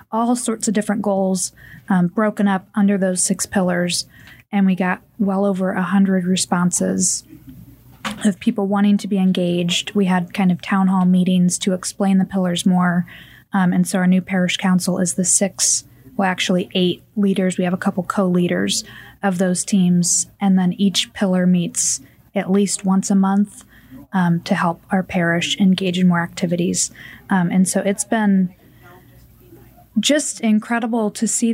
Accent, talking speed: American, 165 wpm